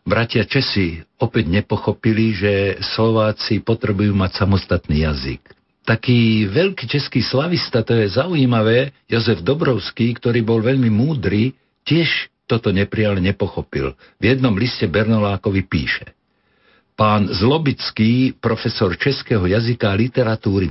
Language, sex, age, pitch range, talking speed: Slovak, male, 60-79, 100-130 Hz, 115 wpm